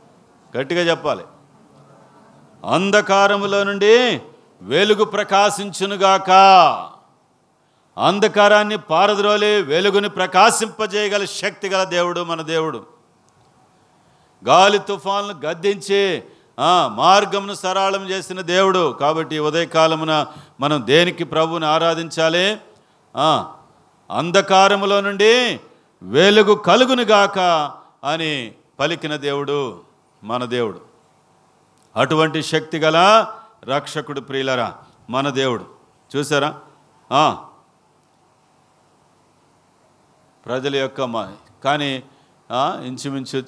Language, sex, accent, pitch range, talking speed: Telugu, male, native, 135-200 Hz, 70 wpm